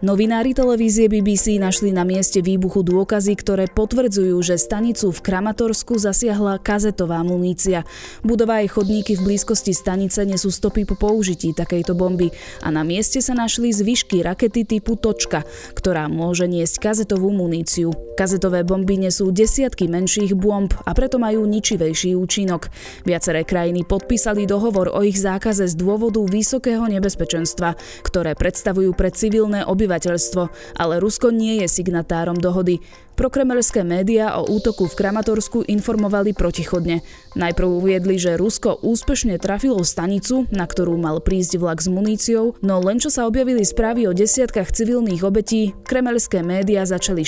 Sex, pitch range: female, 180-220 Hz